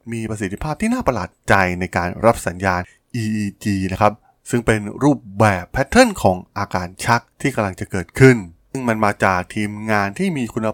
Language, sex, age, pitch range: Thai, male, 20-39, 95-120 Hz